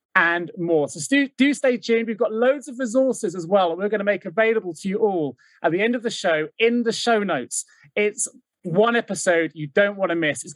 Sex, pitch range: male, 165-235 Hz